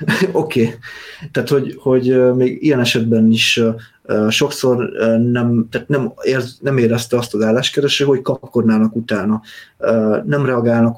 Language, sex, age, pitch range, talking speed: Hungarian, male, 30-49, 110-120 Hz, 150 wpm